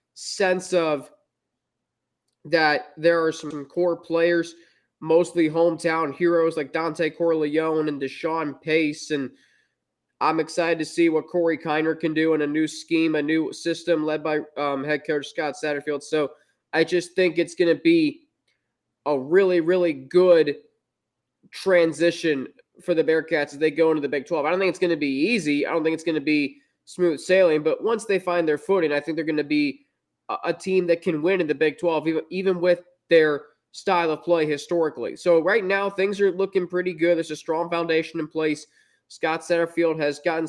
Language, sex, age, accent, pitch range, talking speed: English, male, 20-39, American, 155-175 Hz, 190 wpm